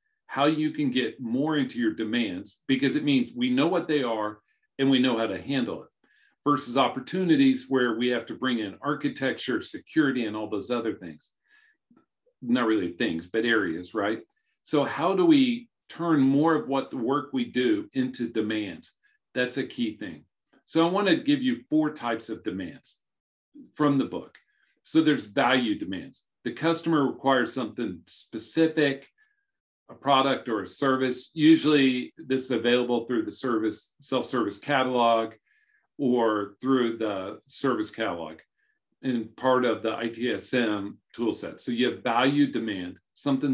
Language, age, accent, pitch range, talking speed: English, 50-69, American, 120-160 Hz, 160 wpm